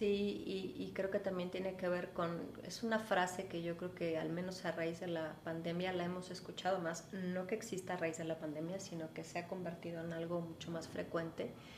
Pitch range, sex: 175-200 Hz, female